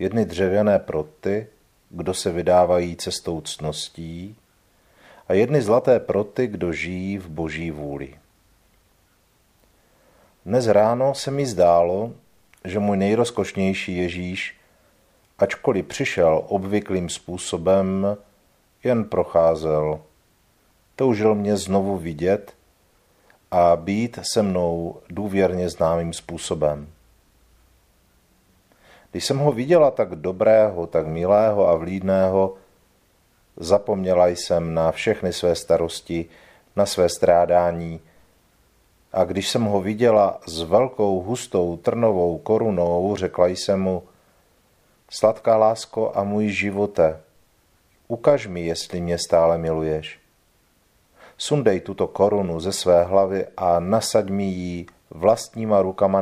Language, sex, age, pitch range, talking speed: Czech, male, 50-69, 85-100 Hz, 105 wpm